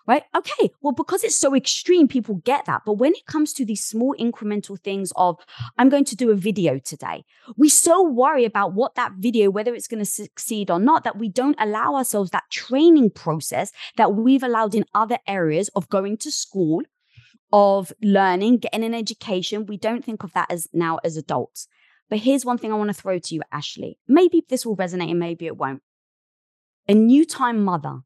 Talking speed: 205 wpm